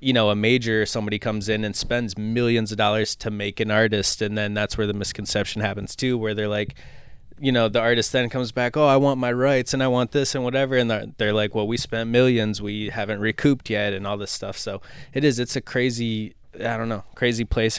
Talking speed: 240 wpm